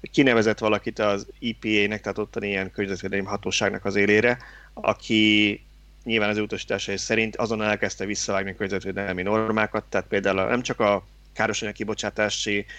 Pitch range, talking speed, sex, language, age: 95-110 Hz, 130 wpm, male, Hungarian, 30-49